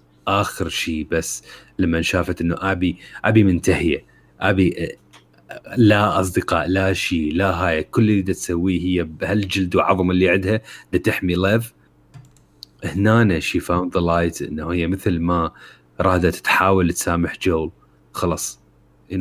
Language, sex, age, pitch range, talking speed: Arabic, male, 30-49, 75-95 Hz, 130 wpm